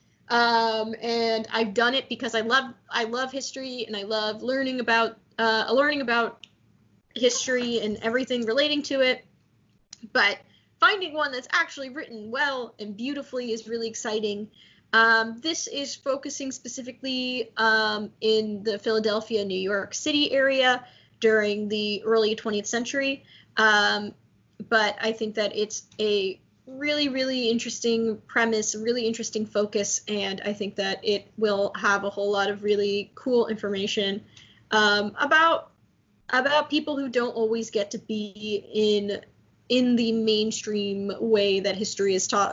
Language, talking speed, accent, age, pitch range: English, 145 wpm, American, 10-29, 210-255 Hz